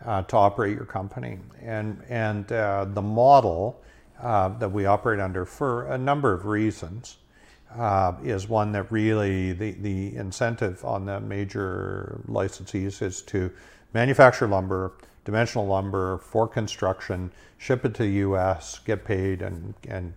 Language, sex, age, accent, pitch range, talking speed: English, male, 50-69, American, 95-110 Hz, 145 wpm